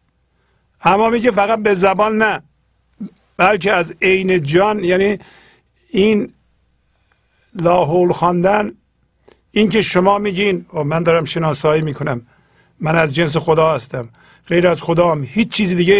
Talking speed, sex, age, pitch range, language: 120 wpm, male, 50-69, 145-190 Hz, Persian